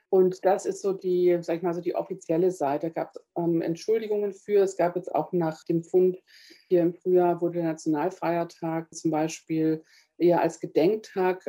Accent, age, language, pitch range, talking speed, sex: German, 50-69, German, 165-185 Hz, 185 wpm, female